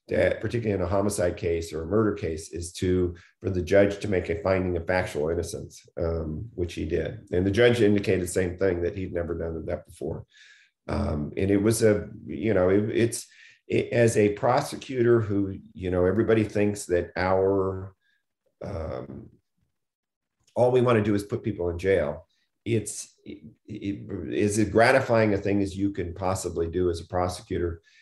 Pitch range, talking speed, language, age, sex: 90-110 Hz, 185 wpm, English, 50-69, male